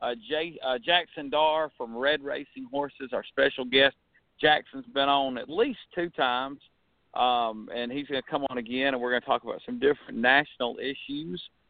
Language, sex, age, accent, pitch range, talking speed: English, male, 50-69, American, 125-160 Hz, 190 wpm